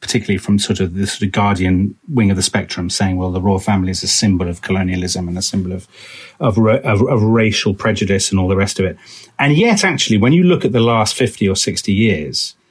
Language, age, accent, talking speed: English, 40-59, British, 235 wpm